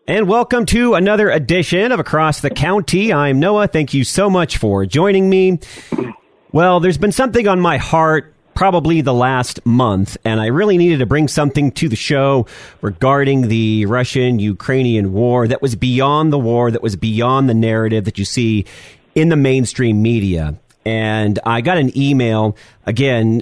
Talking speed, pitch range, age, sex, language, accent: 170 wpm, 110-150 Hz, 40-59, male, English, American